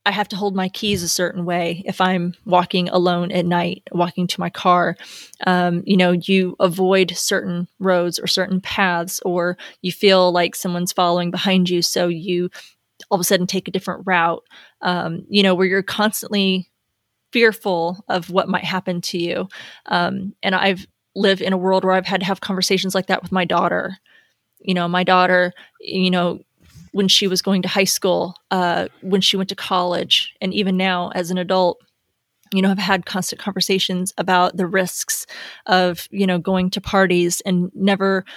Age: 20-39